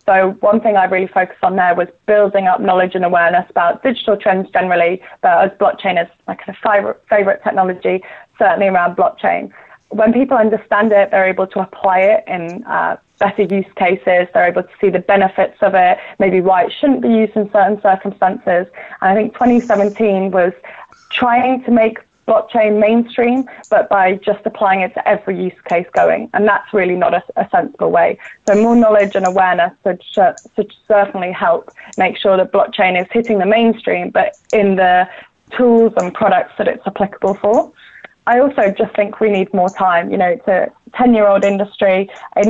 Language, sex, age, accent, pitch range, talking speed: English, female, 20-39, British, 185-220 Hz, 190 wpm